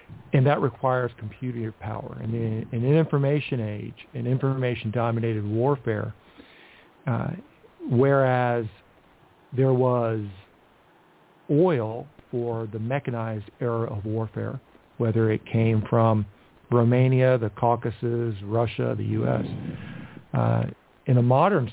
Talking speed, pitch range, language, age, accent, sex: 105 wpm, 110-130 Hz, English, 50-69, American, male